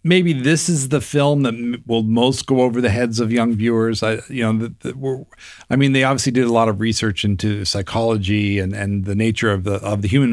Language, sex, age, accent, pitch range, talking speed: English, male, 40-59, American, 105-125 Hz, 240 wpm